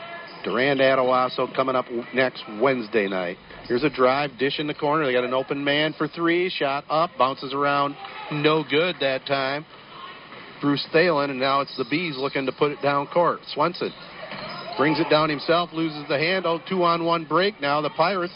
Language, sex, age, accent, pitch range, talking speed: English, male, 50-69, American, 135-170 Hz, 180 wpm